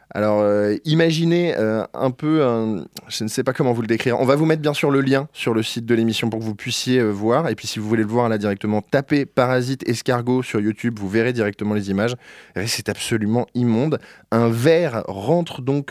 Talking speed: 230 wpm